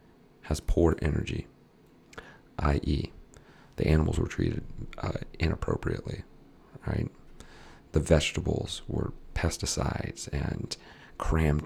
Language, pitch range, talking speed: English, 75-95 Hz, 85 wpm